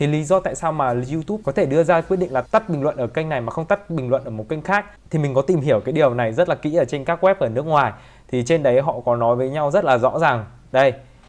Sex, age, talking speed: male, 20-39, 320 wpm